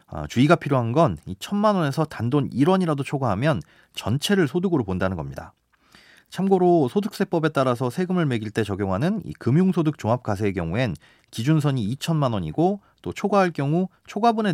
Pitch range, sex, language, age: 105-155 Hz, male, Korean, 30-49